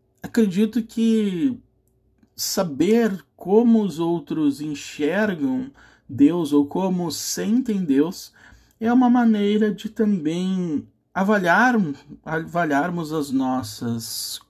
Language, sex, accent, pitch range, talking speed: Portuguese, male, Brazilian, 145-215 Hz, 85 wpm